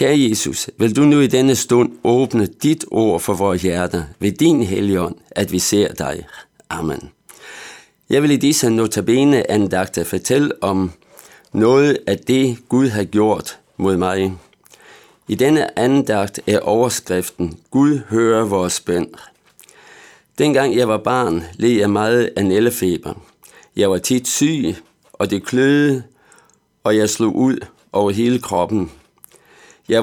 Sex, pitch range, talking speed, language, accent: male, 95-120 Hz, 140 wpm, Danish, native